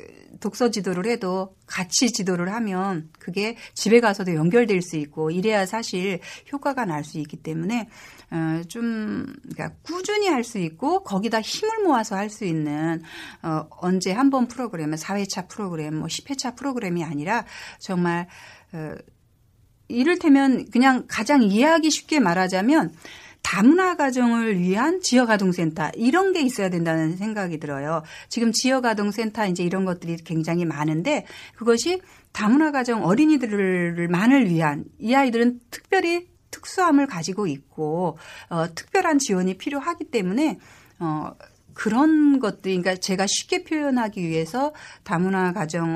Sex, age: female, 60-79